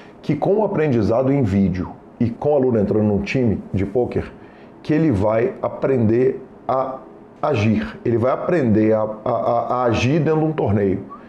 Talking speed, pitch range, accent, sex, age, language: 170 wpm, 105-140 Hz, Brazilian, male, 40-59, Portuguese